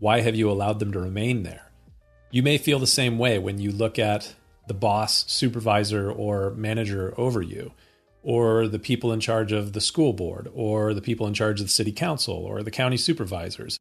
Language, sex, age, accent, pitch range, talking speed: English, male, 40-59, American, 100-115 Hz, 205 wpm